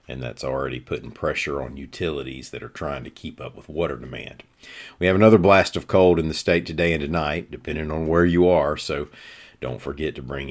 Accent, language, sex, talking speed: American, English, male, 215 wpm